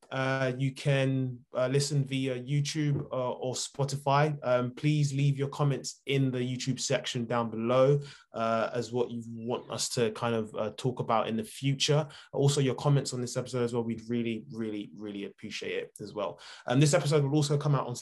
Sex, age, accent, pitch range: male, 20-39, British, 120-140 Hz